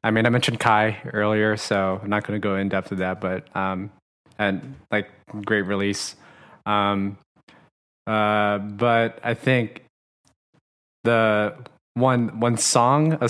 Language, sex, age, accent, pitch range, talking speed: English, male, 20-39, American, 105-120 Hz, 145 wpm